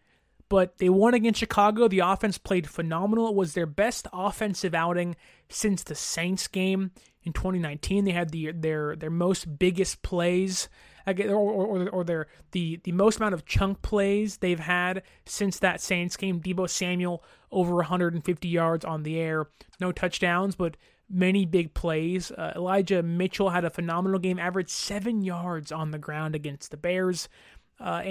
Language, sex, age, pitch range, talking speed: English, male, 20-39, 175-200 Hz, 165 wpm